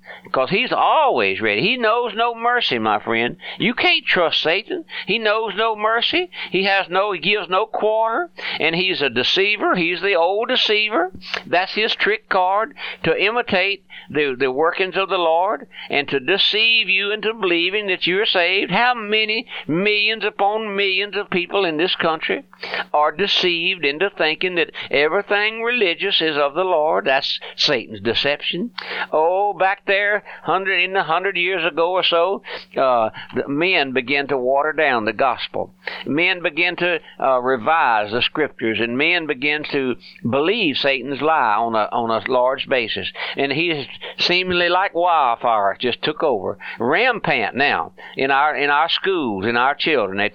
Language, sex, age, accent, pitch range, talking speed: English, male, 60-79, American, 140-210 Hz, 160 wpm